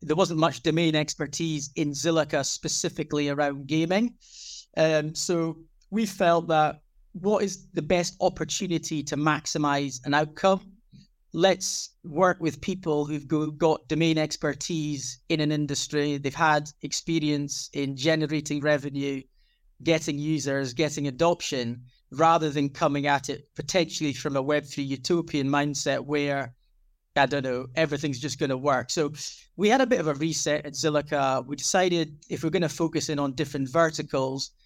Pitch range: 140-160 Hz